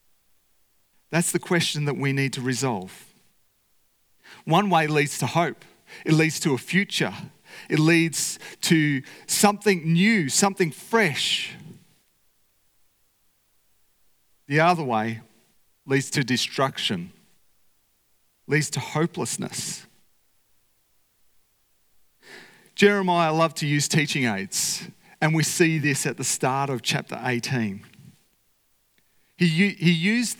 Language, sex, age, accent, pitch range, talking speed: English, male, 40-59, Australian, 115-170 Hz, 105 wpm